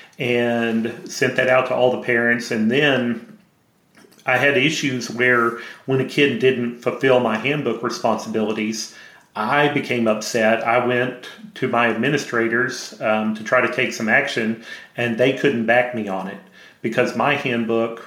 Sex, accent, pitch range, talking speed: male, American, 115-125 Hz, 155 wpm